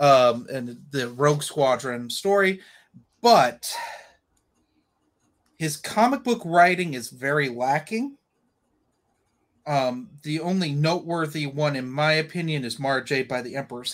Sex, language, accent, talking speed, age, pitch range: male, English, American, 115 wpm, 30-49, 130-175 Hz